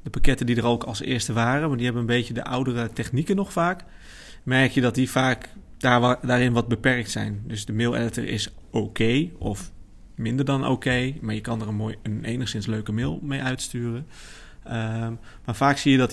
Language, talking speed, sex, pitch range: Dutch, 220 wpm, male, 110-130 Hz